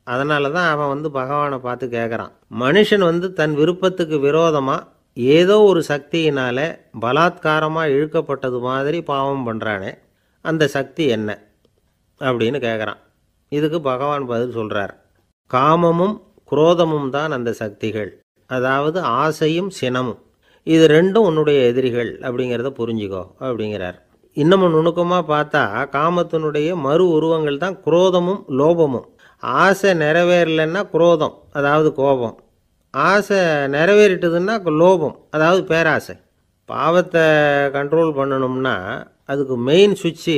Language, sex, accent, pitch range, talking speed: Tamil, male, native, 125-165 Hz, 100 wpm